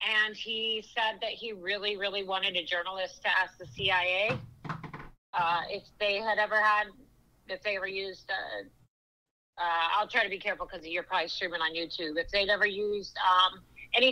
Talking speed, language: 180 wpm, English